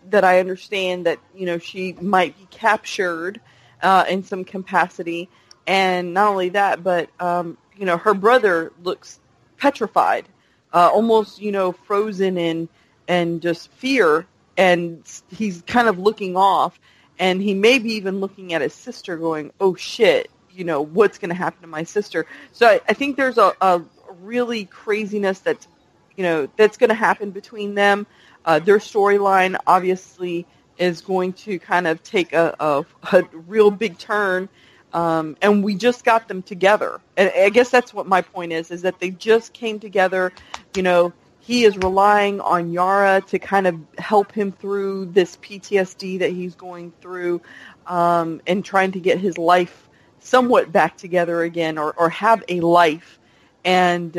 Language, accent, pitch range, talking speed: English, American, 175-205 Hz, 170 wpm